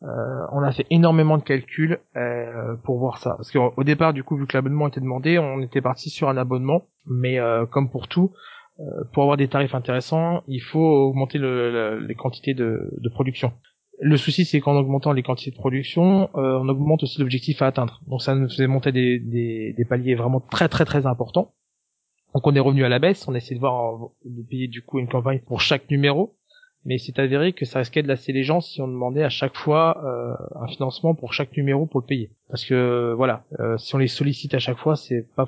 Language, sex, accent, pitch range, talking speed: French, male, French, 125-150 Hz, 230 wpm